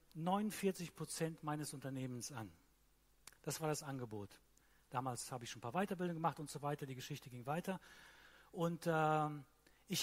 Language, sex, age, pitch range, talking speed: German, male, 40-59, 145-175 Hz, 160 wpm